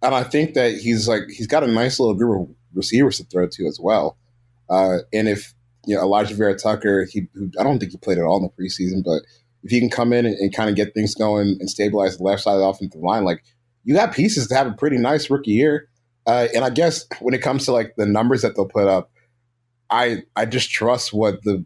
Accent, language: American, English